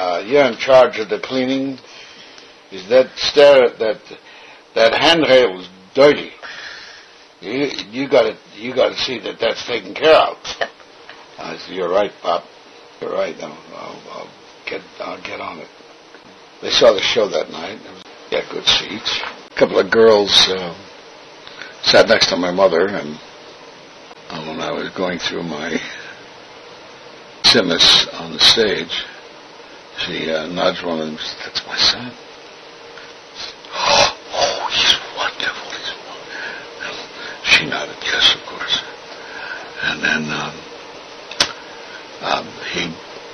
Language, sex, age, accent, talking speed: English, male, 60-79, American, 140 wpm